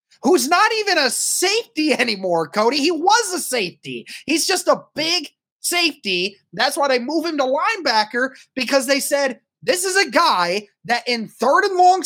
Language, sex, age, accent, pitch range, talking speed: English, male, 20-39, American, 195-290 Hz, 175 wpm